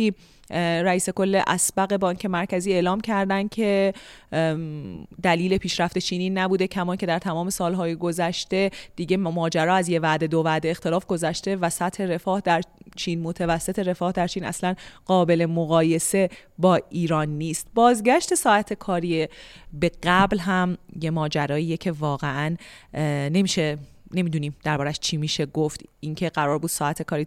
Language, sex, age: Persian, female, 30-49